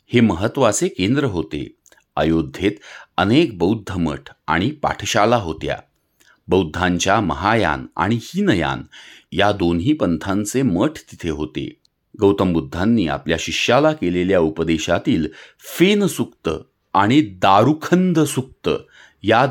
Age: 40-59